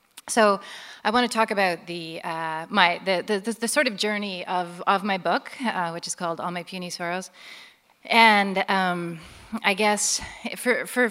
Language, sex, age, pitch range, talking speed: English, female, 30-49, 170-210 Hz, 180 wpm